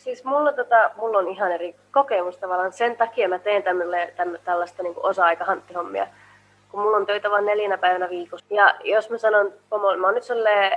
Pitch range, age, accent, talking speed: 180-230 Hz, 20-39, native, 175 wpm